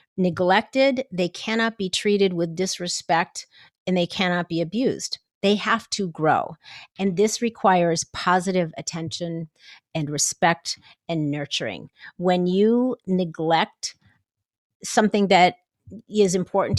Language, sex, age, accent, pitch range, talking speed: English, female, 40-59, American, 175-220 Hz, 115 wpm